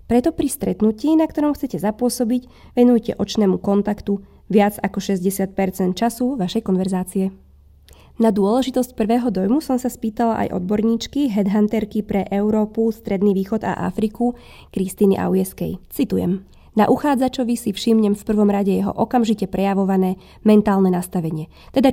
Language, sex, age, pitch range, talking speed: Slovak, female, 20-39, 190-230 Hz, 130 wpm